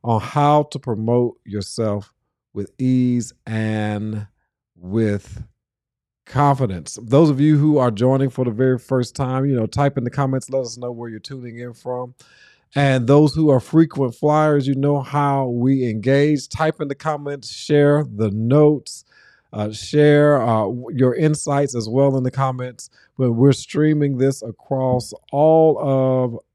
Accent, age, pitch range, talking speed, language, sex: American, 40-59, 110-140 Hz, 155 wpm, English, male